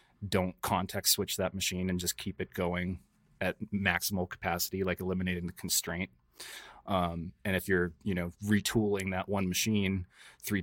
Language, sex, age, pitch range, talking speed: English, male, 30-49, 90-95 Hz, 160 wpm